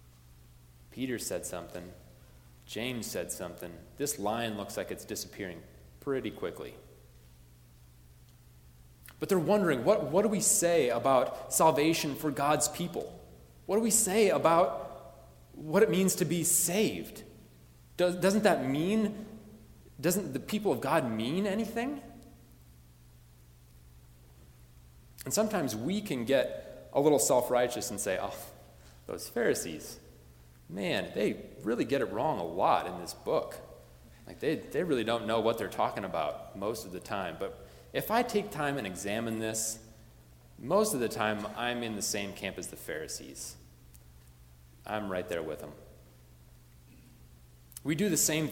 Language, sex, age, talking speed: English, male, 30-49, 140 wpm